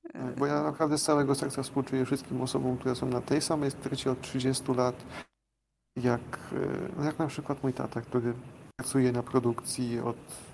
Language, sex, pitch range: Polish, male, 120-130 Hz